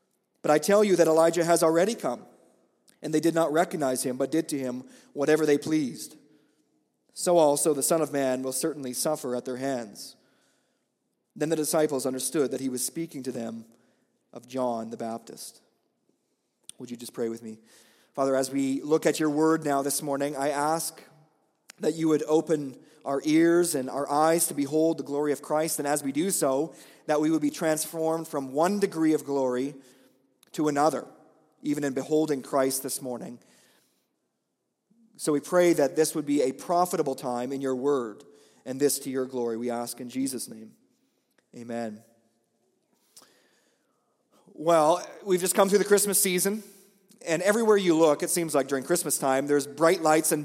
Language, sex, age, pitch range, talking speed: English, male, 30-49, 135-165 Hz, 180 wpm